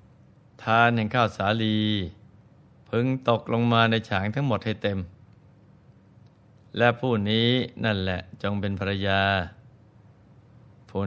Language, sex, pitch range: Thai, male, 100-120 Hz